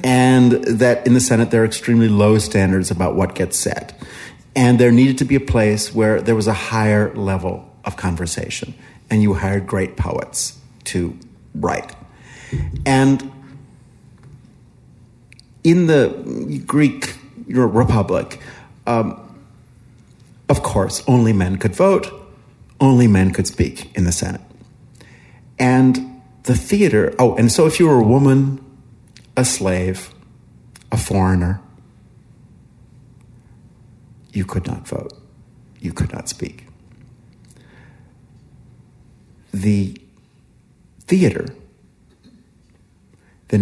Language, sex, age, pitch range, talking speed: English, male, 50-69, 95-125 Hz, 110 wpm